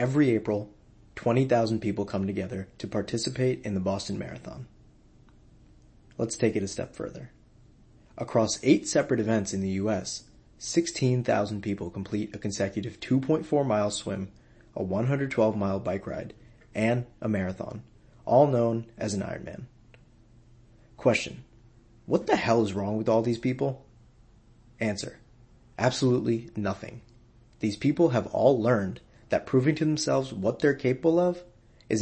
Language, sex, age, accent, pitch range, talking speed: English, male, 30-49, American, 105-125 Hz, 135 wpm